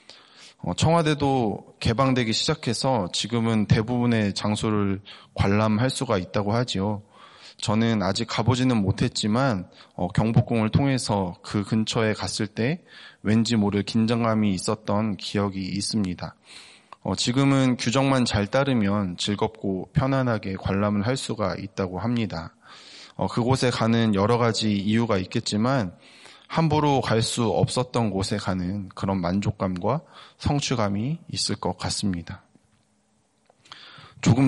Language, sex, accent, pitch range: Korean, male, native, 100-120 Hz